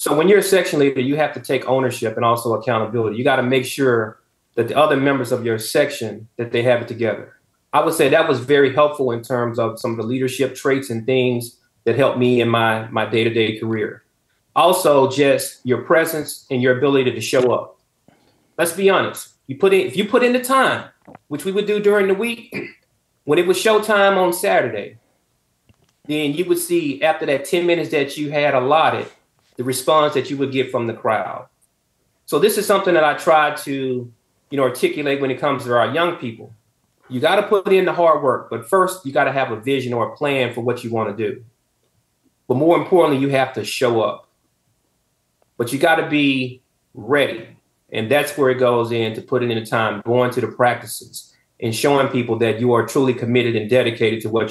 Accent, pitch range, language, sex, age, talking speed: American, 120-150 Hz, English, male, 30-49, 215 wpm